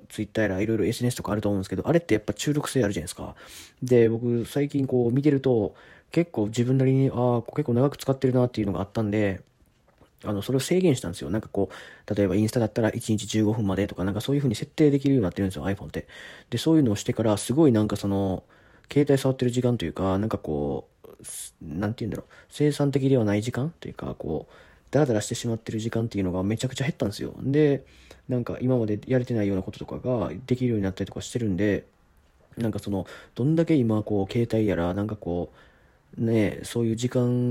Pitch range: 100-125 Hz